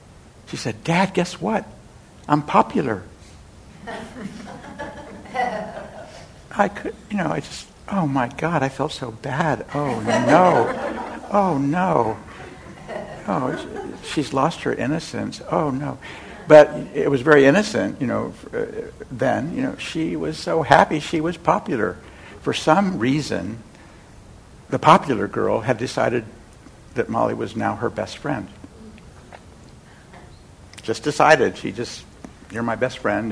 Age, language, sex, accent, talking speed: 60-79, English, male, American, 130 wpm